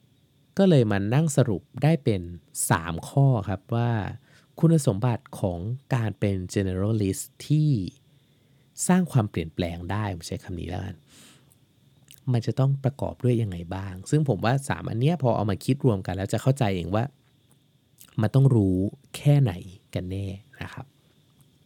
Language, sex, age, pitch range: English, male, 20-39, 105-140 Hz